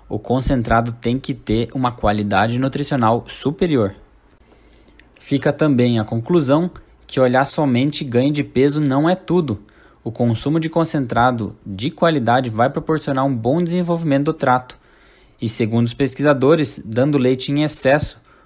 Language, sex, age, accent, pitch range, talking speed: Portuguese, male, 20-39, Brazilian, 120-150 Hz, 140 wpm